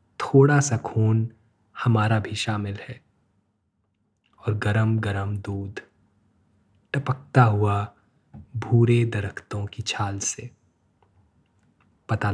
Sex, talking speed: male, 90 wpm